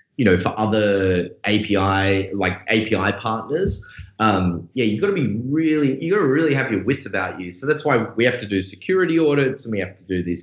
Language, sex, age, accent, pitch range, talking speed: English, male, 20-39, Australian, 95-125 Hz, 225 wpm